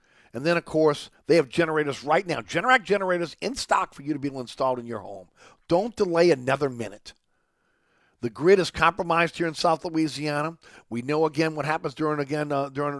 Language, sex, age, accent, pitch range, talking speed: English, male, 50-69, American, 125-160 Hz, 195 wpm